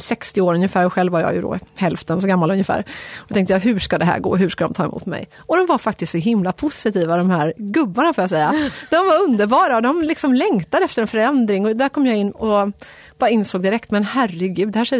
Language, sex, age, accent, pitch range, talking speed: Swedish, female, 30-49, native, 190-280 Hz, 255 wpm